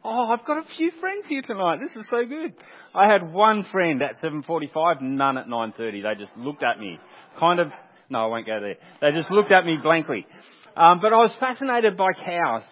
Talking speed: 215 wpm